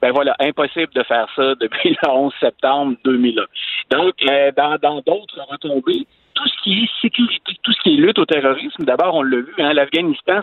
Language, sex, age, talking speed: French, male, 50-69, 195 wpm